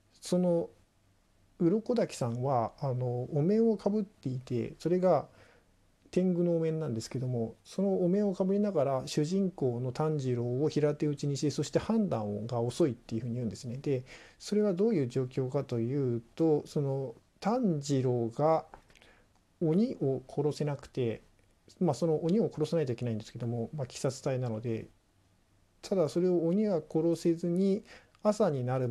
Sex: male